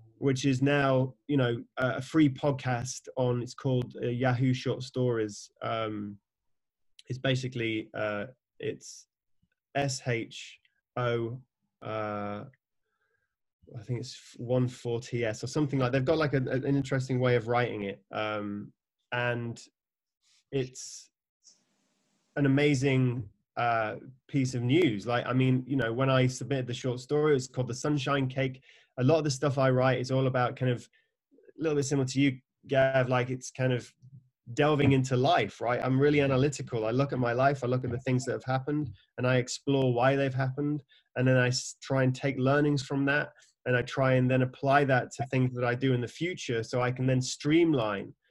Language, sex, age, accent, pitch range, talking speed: English, male, 20-39, British, 120-140 Hz, 180 wpm